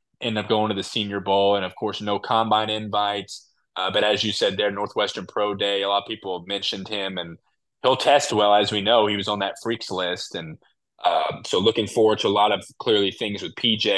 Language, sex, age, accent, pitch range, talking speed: English, male, 20-39, American, 100-120 Hz, 235 wpm